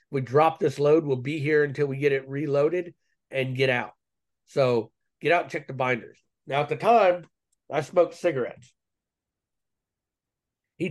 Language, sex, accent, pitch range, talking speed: English, male, American, 135-195 Hz, 165 wpm